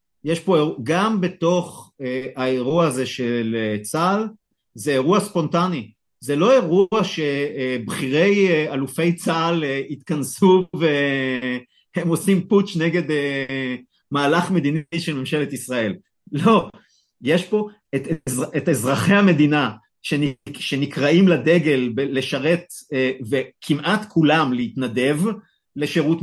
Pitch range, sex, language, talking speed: 135-180 Hz, male, Hebrew, 100 wpm